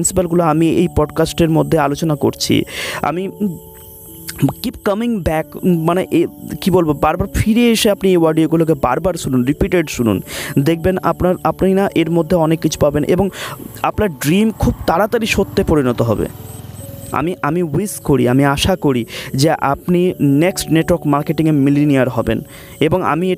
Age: 30-49